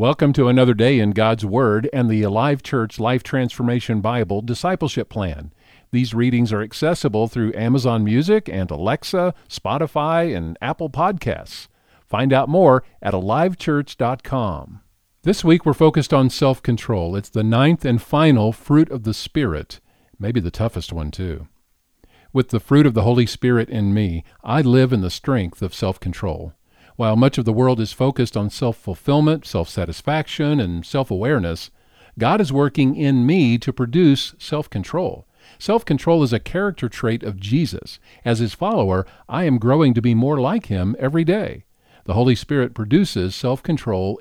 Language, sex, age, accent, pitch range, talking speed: English, male, 50-69, American, 105-140 Hz, 155 wpm